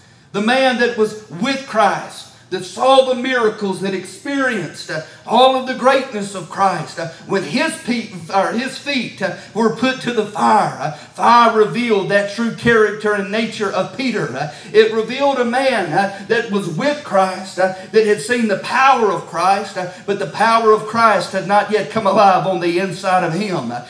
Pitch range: 190-235 Hz